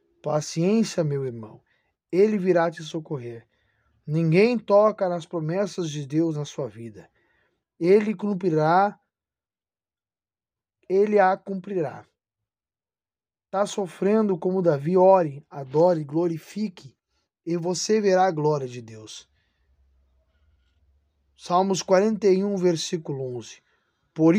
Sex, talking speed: male, 100 wpm